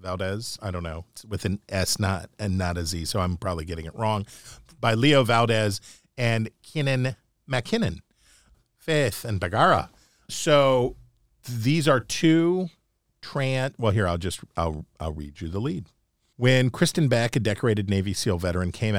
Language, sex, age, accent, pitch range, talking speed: English, male, 50-69, American, 95-120 Hz, 165 wpm